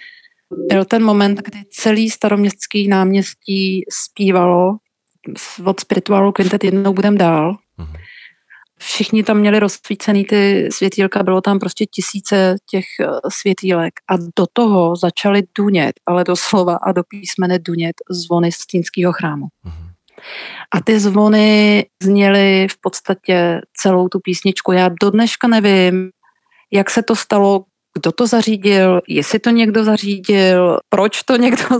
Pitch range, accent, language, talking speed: 185-210 Hz, native, Czech, 125 wpm